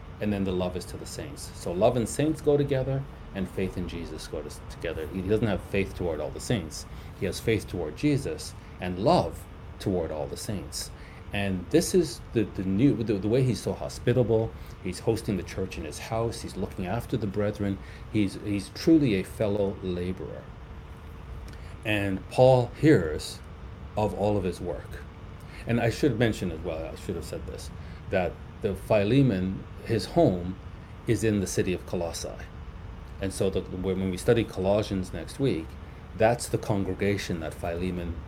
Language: English